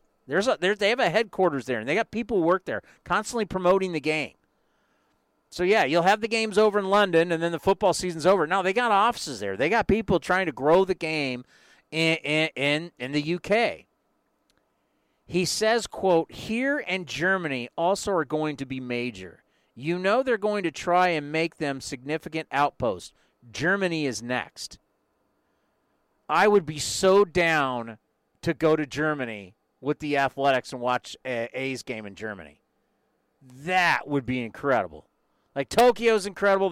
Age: 40-59